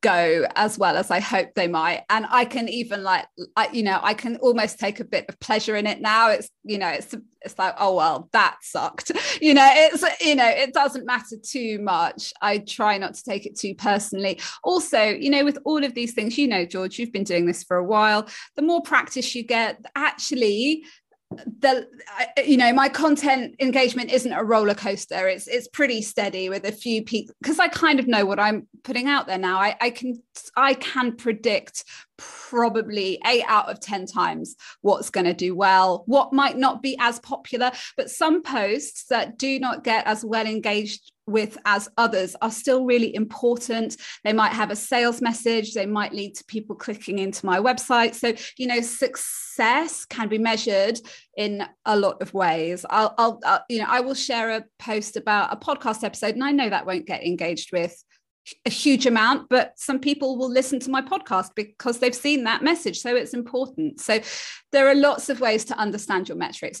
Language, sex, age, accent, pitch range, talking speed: English, female, 20-39, British, 210-265 Hz, 200 wpm